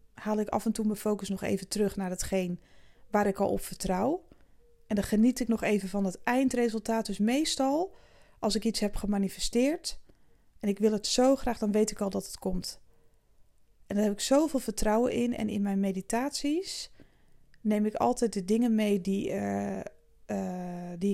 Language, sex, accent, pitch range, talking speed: Dutch, female, Dutch, 195-225 Hz, 185 wpm